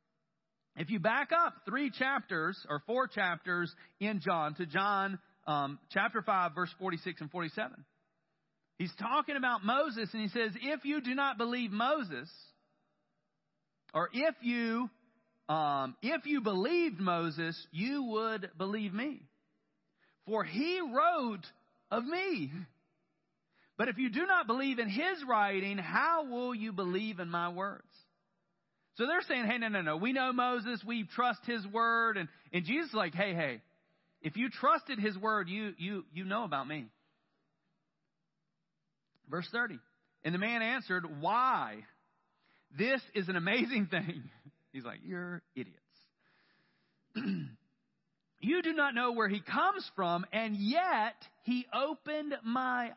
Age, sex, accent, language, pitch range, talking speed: 40-59, male, American, English, 175-250 Hz, 145 wpm